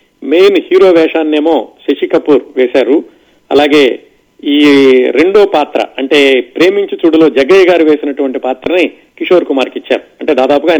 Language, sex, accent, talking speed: Telugu, male, native, 120 wpm